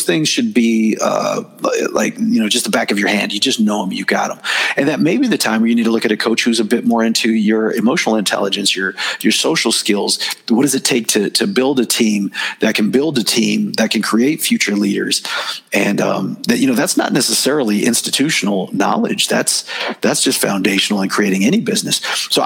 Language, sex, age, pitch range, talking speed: English, male, 40-59, 105-135 Hz, 225 wpm